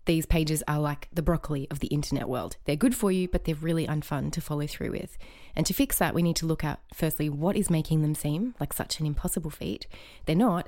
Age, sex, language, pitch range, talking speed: 20-39, female, English, 150-195 Hz, 245 wpm